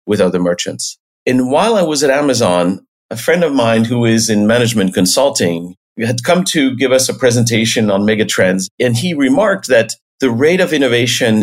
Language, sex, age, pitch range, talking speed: English, male, 50-69, 105-125 Hz, 185 wpm